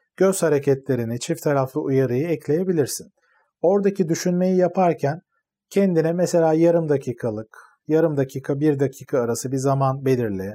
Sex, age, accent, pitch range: male, 40-59, native, 130-170 Hz